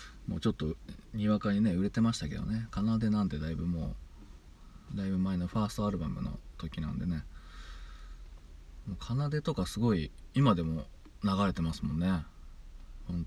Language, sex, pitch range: Japanese, male, 75-100 Hz